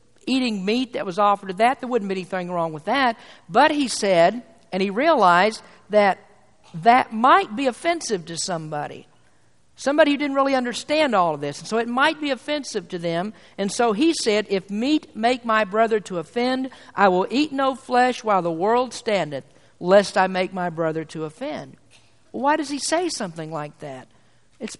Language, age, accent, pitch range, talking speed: English, 50-69, American, 185-245 Hz, 190 wpm